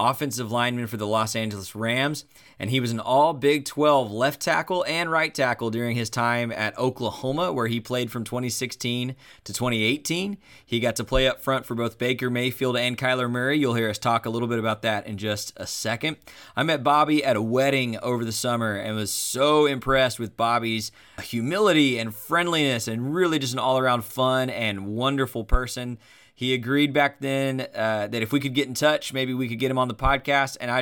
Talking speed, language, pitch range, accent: 205 wpm, English, 115-140 Hz, American